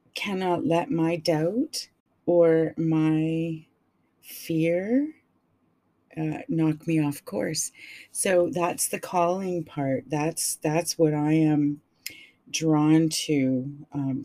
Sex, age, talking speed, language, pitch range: female, 40-59, 105 wpm, English, 140-165 Hz